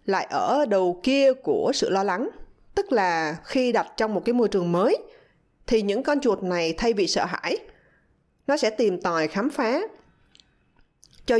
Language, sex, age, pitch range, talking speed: Vietnamese, female, 20-39, 195-280 Hz, 180 wpm